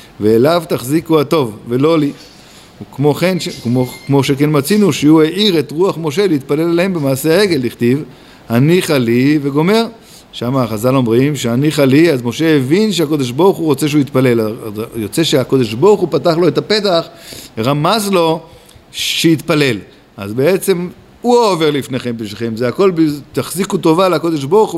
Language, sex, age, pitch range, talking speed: Hebrew, male, 50-69, 125-175 Hz, 150 wpm